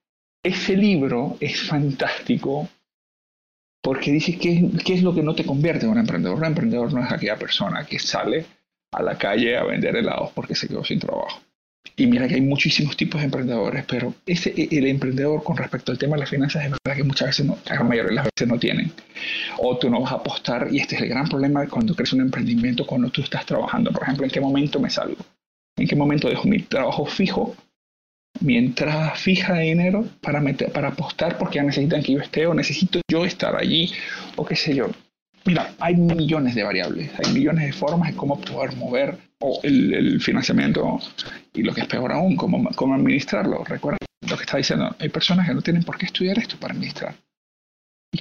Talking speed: 210 wpm